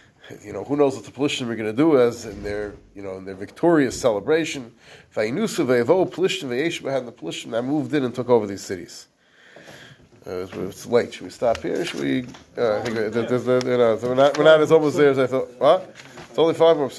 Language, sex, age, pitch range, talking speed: English, male, 30-49, 120-160 Hz, 175 wpm